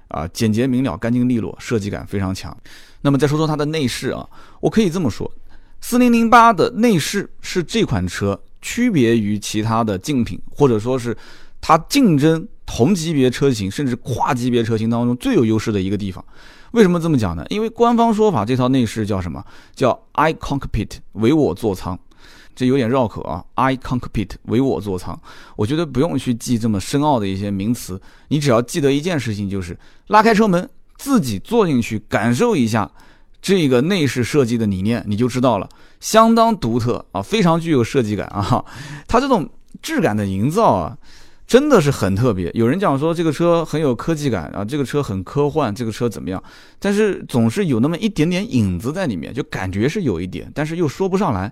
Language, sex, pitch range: Chinese, male, 105-165 Hz